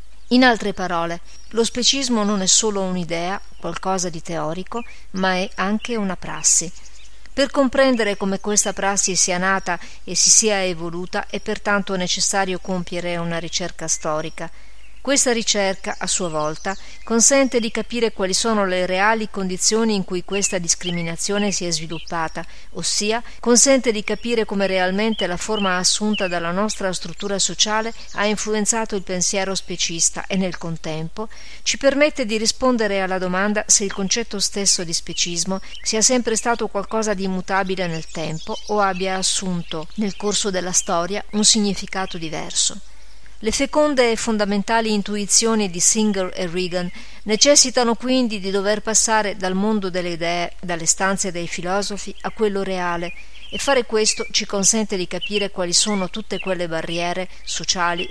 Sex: female